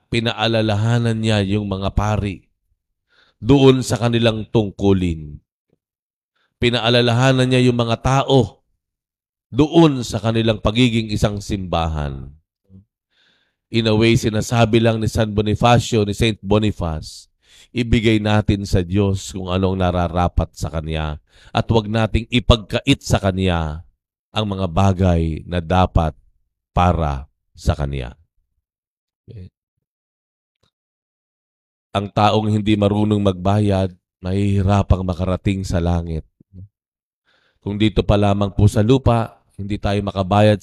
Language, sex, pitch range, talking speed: Filipino, male, 90-110 Hz, 110 wpm